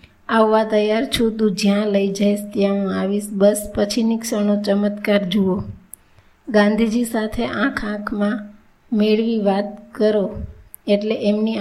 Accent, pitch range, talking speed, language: native, 200-220 Hz, 120 wpm, Gujarati